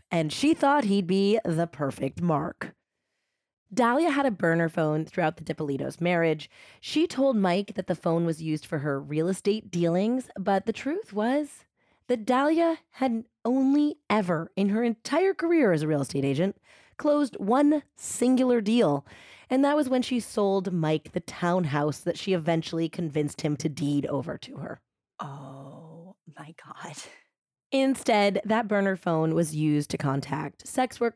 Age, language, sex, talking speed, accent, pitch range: 30-49, English, female, 160 wpm, American, 160-245 Hz